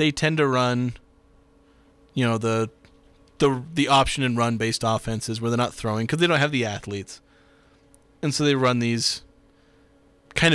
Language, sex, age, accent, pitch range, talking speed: English, male, 30-49, American, 115-135 Hz, 165 wpm